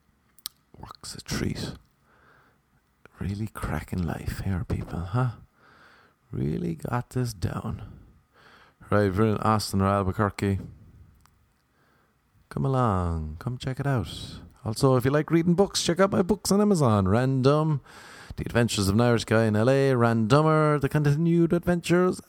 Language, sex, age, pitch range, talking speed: English, male, 30-49, 95-135 Hz, 130 wpm